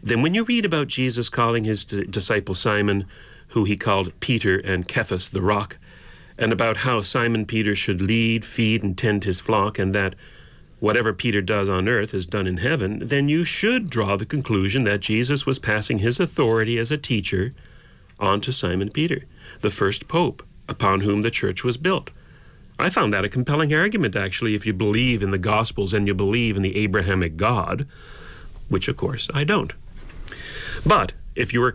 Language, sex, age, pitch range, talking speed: English, male, 40-59, 95-125 Hz, 185 wpm